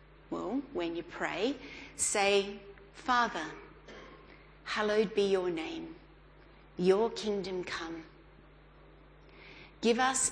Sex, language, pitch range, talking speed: female, English, 185-275 Hz, 85 wpm